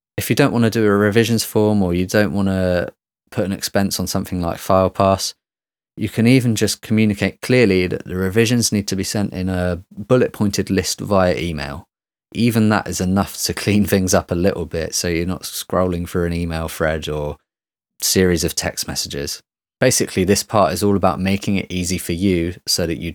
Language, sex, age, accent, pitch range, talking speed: English, male, 20-39, British, 85-100 Hz, 205 wpm